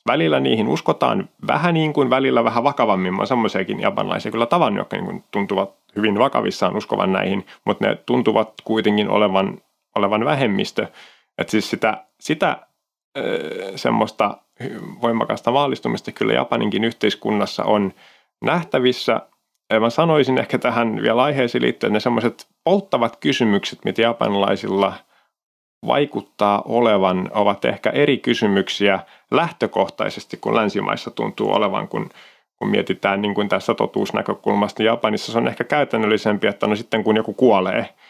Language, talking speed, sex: Finnish, 130 wpm, male